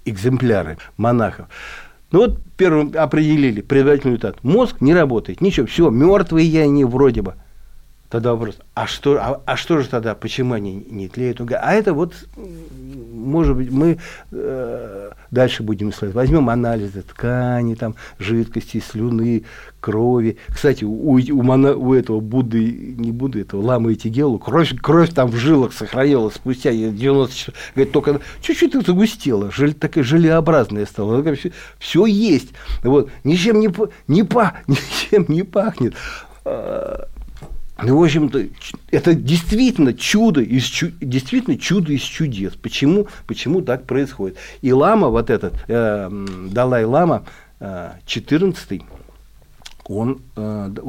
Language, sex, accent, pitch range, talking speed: Russian, male, native, 115-155 Hz, 130 wpm